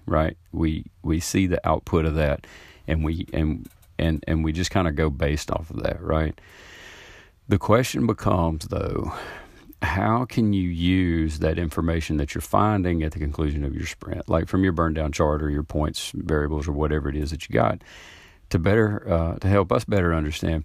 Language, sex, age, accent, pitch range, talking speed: English, male, 40-59, American, 75-90 Hz, 195 wpm